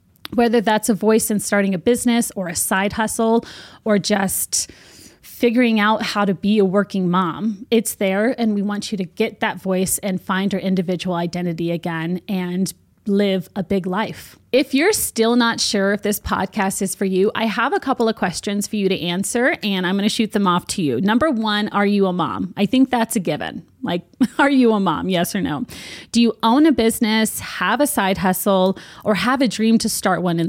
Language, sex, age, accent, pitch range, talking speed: English, female, 30-49, American, 190-235 Hz, 215 wpm